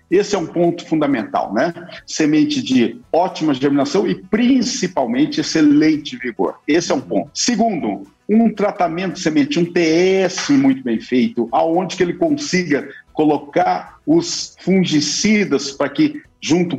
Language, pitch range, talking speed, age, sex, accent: Portuguese, 150-245 Hz, 135 wpm, 50-69, male, Brazilian